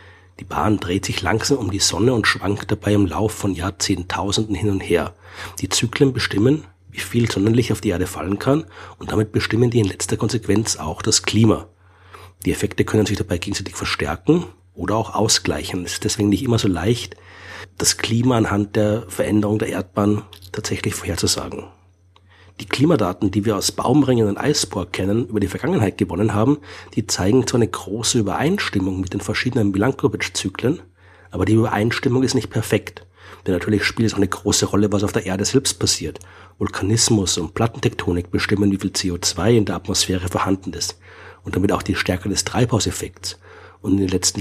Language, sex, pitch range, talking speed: German, male, 95-110 Hz, 180 wpm